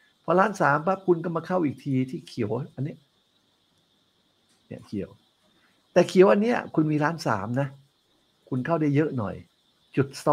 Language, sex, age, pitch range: Thai, male, 60-79, 115-155 Hz